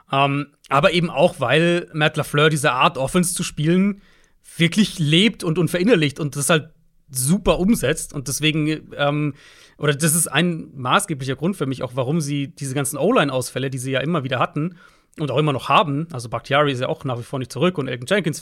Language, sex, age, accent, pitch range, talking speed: German, male, 40-59, German, 145-180 Hz, 200 wpm